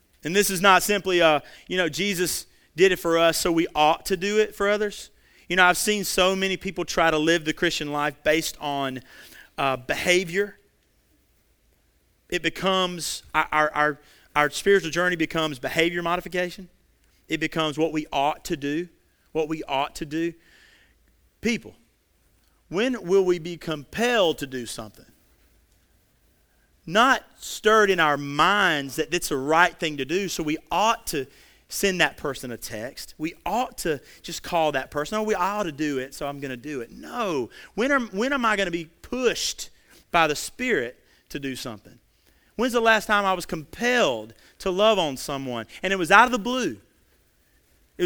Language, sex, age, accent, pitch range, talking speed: English, male, 40-59, American, 145-190 Hz, 180 wpm